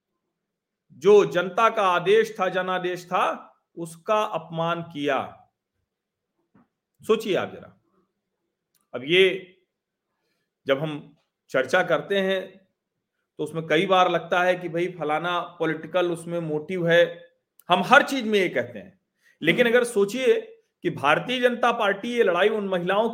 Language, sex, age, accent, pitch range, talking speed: Hindi, male, 40-59, native, 170-245 Hz, 130 wpm